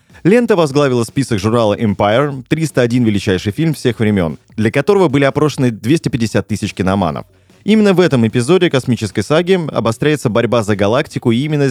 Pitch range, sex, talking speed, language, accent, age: 105-150 Hz, male, 150 wpm, Russian, native, 20-39